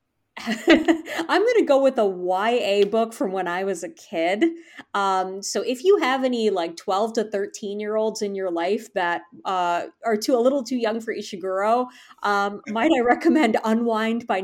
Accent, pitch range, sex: American, 180-240 Hz, female